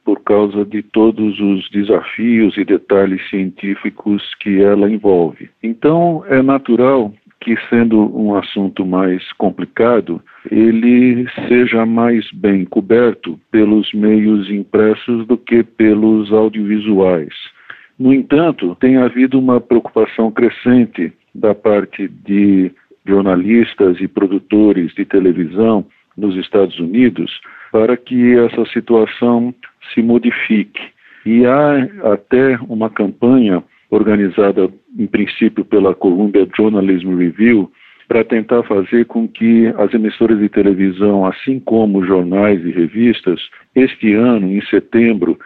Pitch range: 100-120 Hz